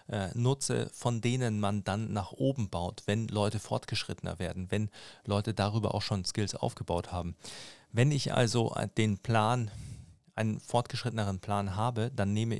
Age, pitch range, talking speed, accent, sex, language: 40-59, 100-120 Hz, 150 wpm, German, male, German